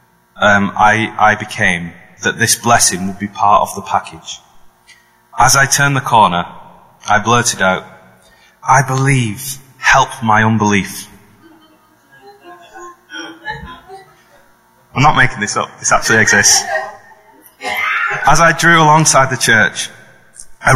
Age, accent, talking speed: 30-49, British, 120 wpm